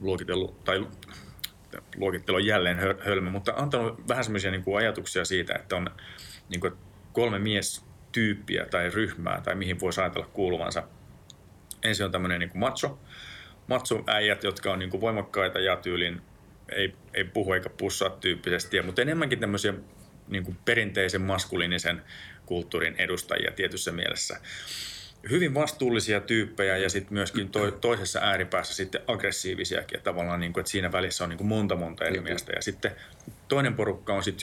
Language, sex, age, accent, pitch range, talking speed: Finnish, male, 30-49, native, 90-105 Hz, 130 wpm